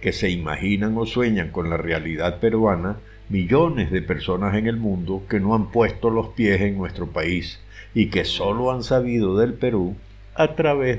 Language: Spanish